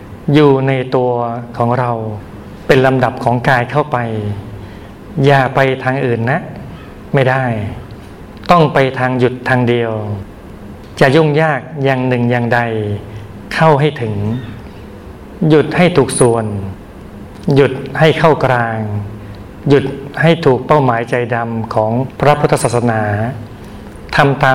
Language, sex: Thai, male